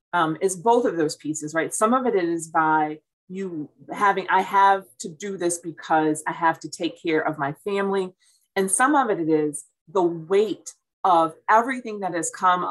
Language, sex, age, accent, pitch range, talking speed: English, female, 30-49, American, 165-220 Hz, 190 wpm